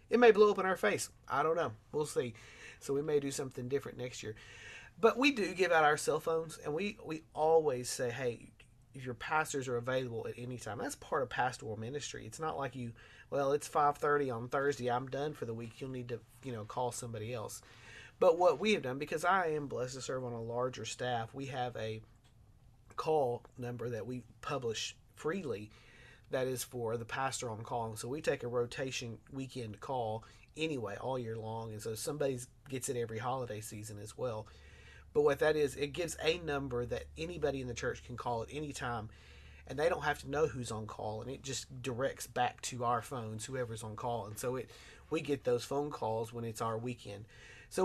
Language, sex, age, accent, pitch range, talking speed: English, male, 30-49, American, 115-140 Hz, 215 wpm